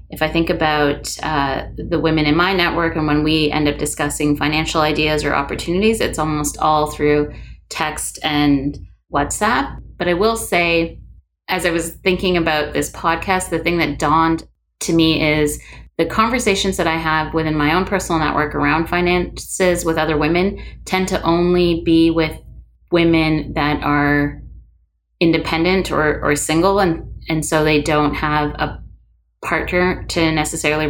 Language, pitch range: English, 145-165 Hz